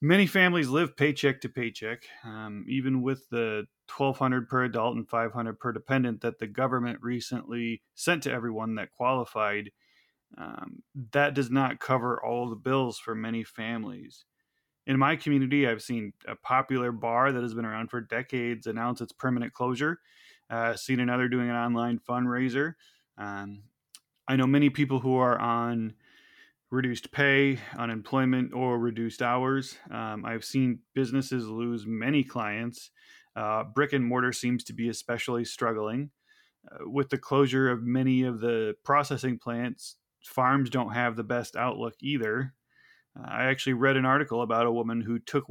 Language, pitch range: English, 115-135 Hz